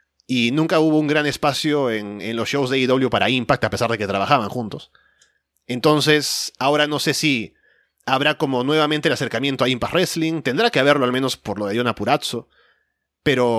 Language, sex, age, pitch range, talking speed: Spanish, male, 30-49, 120-155 Hz, 195 wpm